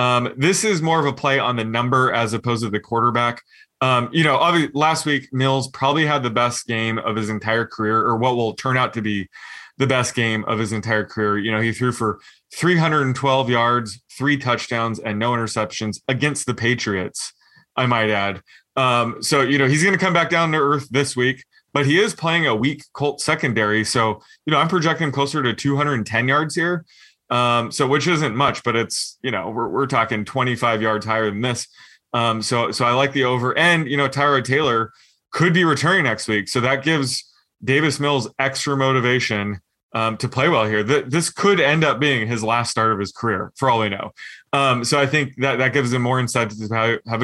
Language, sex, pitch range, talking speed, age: English, male, 110-140 Hz, 215 wpm, 20-39